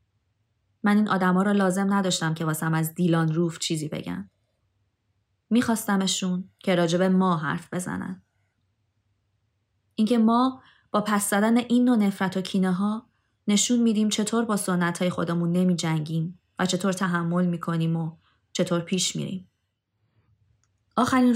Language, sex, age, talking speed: Persian, female, 20-39, 130 wpm